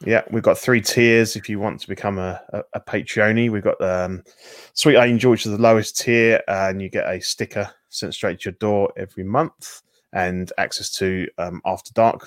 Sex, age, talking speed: male, 20-39, 210 wpm